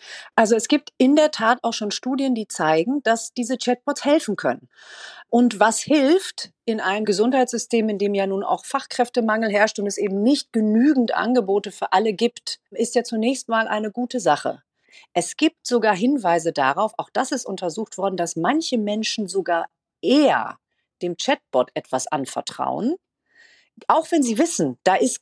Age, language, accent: 40-59, German, German